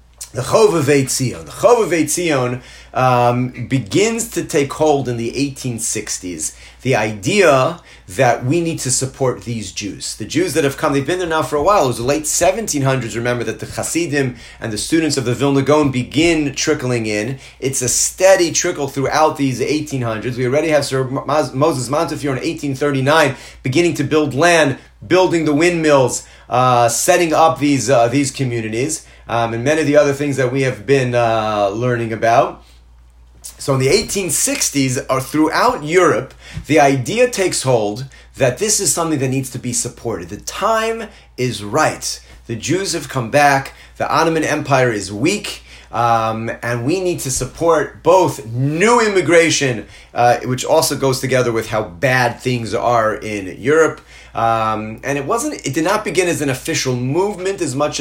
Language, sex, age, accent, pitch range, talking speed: English, male, 30-49, American, 115-150 Hz, 170 wpm